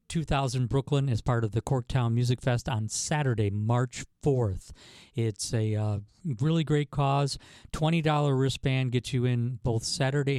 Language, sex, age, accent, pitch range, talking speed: English, male, 50-69, American, 115-135 Hz, 150 wpm